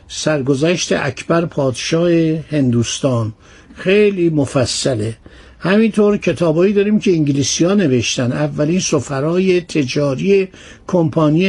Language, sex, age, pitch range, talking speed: Persian, male, 60-79, 145-185 Hz, 95 wpm